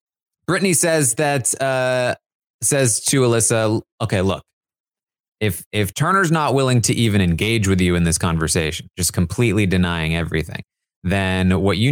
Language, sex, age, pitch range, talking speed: English, male, 20-39, 90-115 Hz, 145 wpm